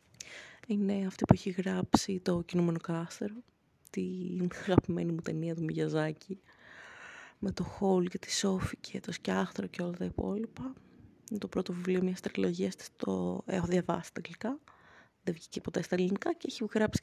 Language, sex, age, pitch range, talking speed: Greek, female, 20-39, 175-220 Hz, 165 wpm